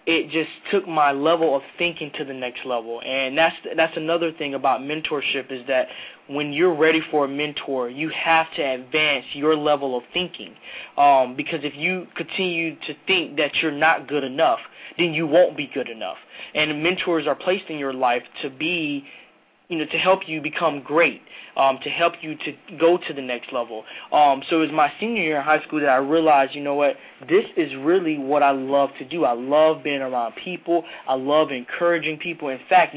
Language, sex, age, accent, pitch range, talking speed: English, male, 20-39, American, 140-165 Hz, 205 wpm